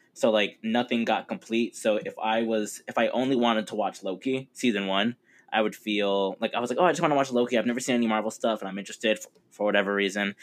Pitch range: 100-120 Hz